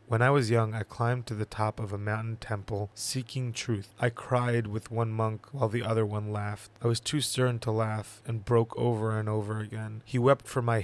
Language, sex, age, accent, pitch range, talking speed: English, male, 20-39, American, 110-120 Hz, 225 wpm